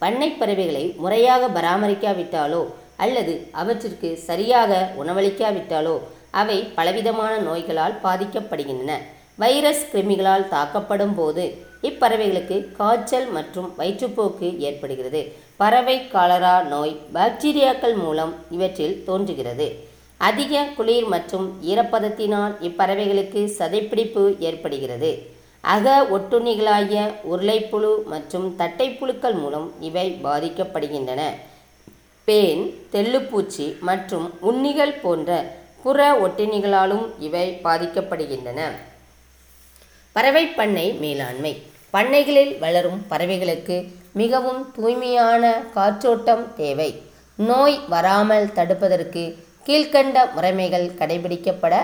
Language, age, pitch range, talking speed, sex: Tamil, 20-39, 170-230 Hz, 80 wpm, female